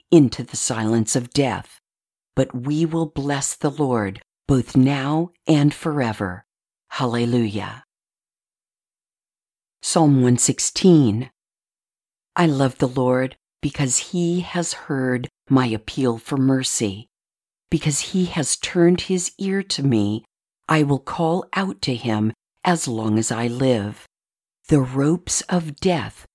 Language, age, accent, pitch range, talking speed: English, 50-69, American, 120-165 Hz, 120 wpm